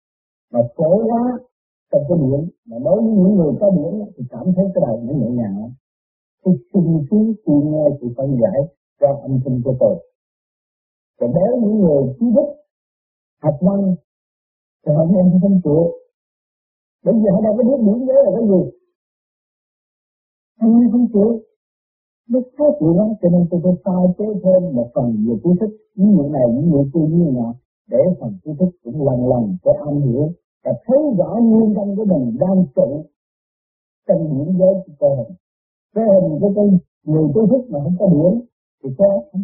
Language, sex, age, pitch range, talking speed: Vietnamese, male, 50-69, 145-210 Hz, 175 wpm